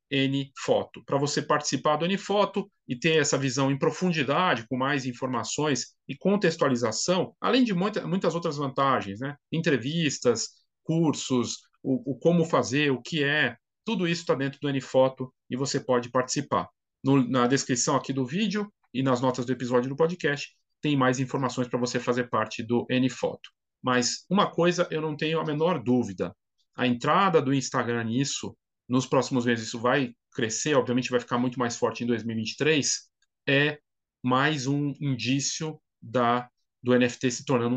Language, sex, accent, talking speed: Portuguese, male, Brazilian, 155 wpm